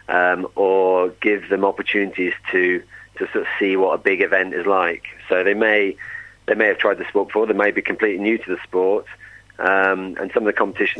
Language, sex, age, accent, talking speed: English, male, 40-59, British, 220 wpm